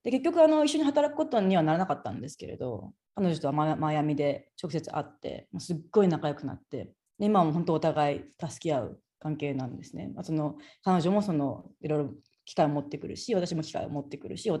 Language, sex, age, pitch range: Japanese, female, 30-49, 150-200 Hz